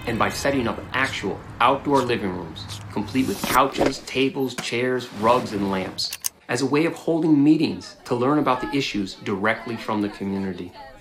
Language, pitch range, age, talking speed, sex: Arabic, 115-185 Hz, 30-49, 170 wpm, male